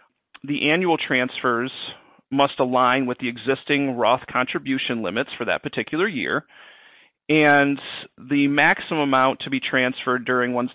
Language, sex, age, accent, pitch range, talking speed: English, male, 40-59, American, 125-145 Hz, 135 wpm